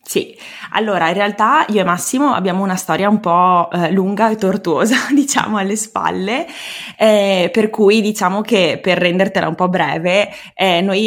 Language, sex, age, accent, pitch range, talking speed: Italian, female, 20-39, native, 170-205 Hz, 165 wpm